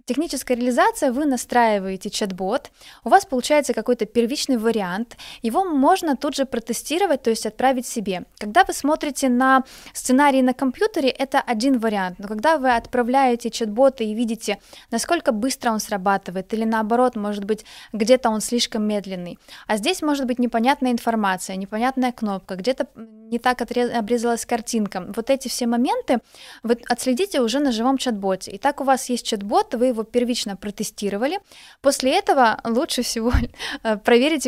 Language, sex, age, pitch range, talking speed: Russian, female, 20-39, 220-270 Hz, 150 wpm